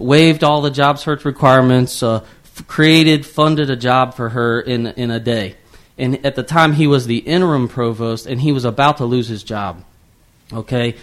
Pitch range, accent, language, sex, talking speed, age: 115-145 Hz, American, English, male, 195 wpm, 30-49